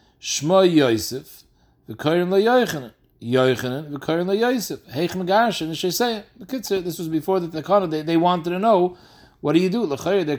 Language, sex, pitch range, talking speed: English, male, 135-185 Hz, 100 wpm